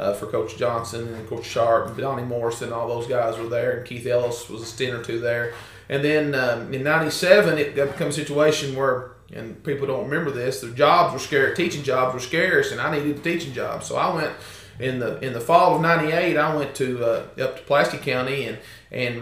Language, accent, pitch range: English, American, 125-155 Hz